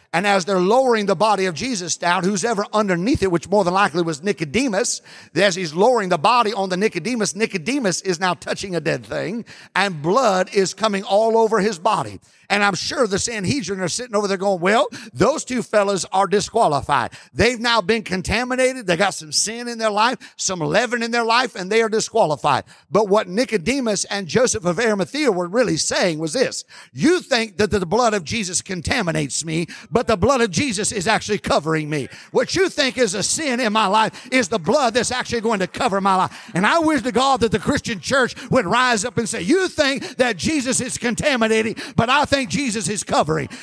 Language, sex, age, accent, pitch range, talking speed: English, male, 50-69, American, 195-250 Hz, 210 wpm